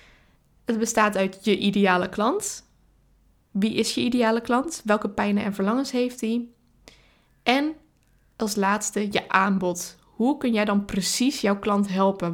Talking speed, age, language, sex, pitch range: 145 wpm, 10-29, Dutch, female, 205-240 Hz